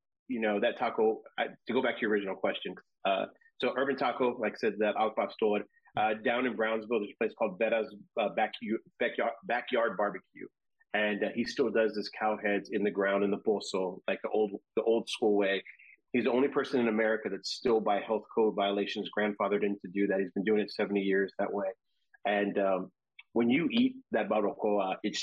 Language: English